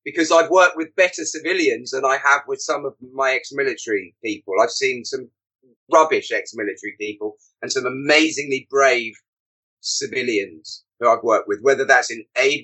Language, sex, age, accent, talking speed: English, male, 30-49, British, 160 wpm